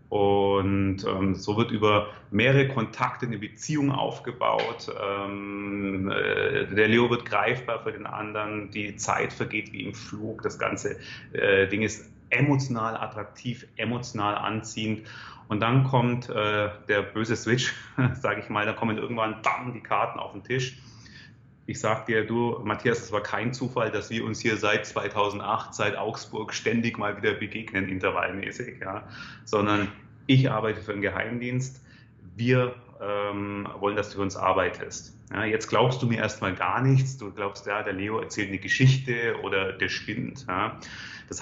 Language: German